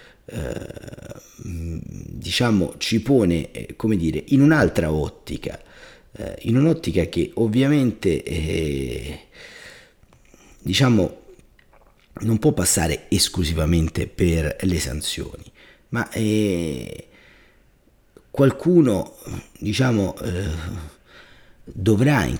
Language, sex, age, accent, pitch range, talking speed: Italian, male, 40-59, native, 85-115 Hz, 75 wpm